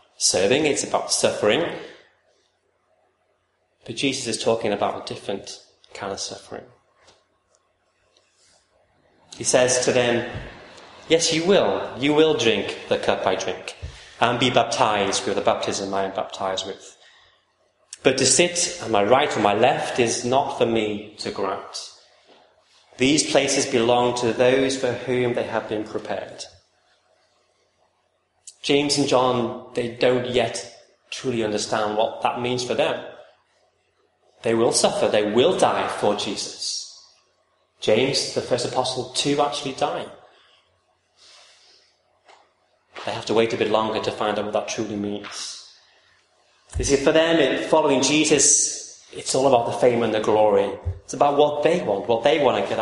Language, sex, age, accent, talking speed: English, male, 30-49, British, 150 wpm